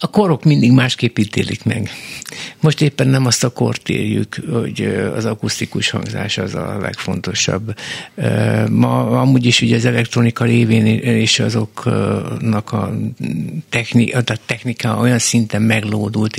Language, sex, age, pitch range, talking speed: Hungarian, male, 50-69, 110-130 Hz, 130 wpm